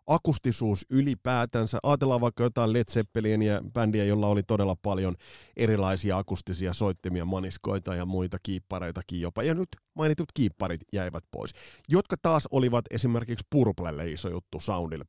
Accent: native